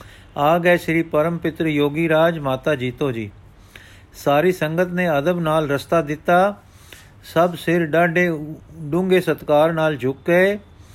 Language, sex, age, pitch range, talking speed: Punjabi, male, 50-69, 135-170 Hz, 120 wpm